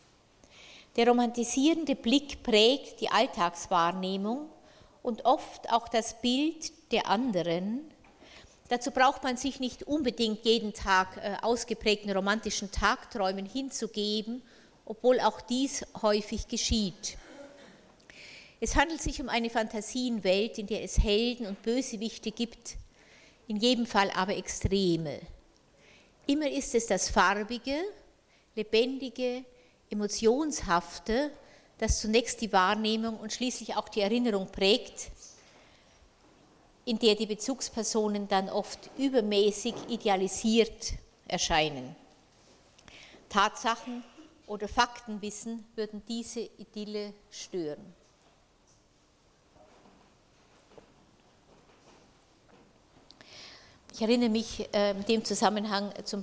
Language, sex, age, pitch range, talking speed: German, female, 50-69, 205-245 Hz, 95 wpm